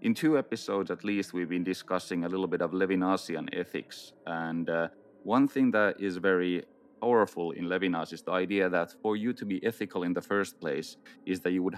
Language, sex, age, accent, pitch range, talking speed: English, male, 30-49, Finnish, 85-100 Hz, 210 wpm